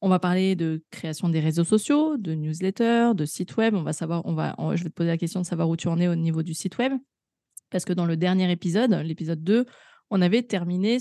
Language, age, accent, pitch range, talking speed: French, 20-39, French, 170-220 Hz, 250 wpm